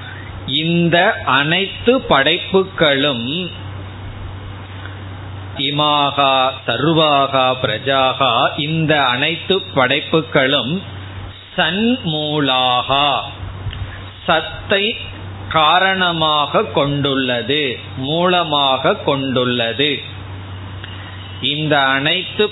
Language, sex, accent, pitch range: Tamil, male, native, 100-155 Hz